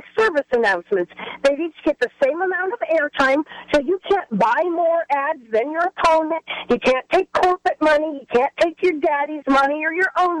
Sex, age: female, 50-69